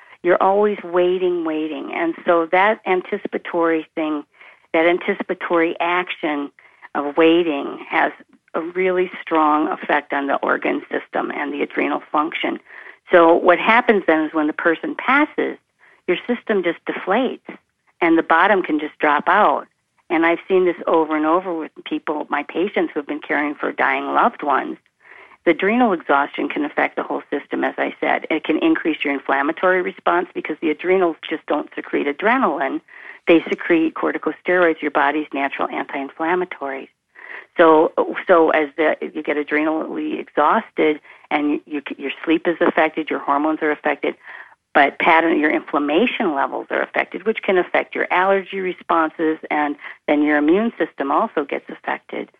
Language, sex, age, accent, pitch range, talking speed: English, female, 50-69, American, 150-185 Hz, 150 wpm